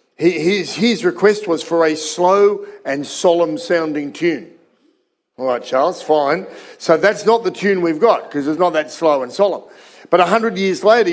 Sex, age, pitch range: male, 50-69, 155-205 Hz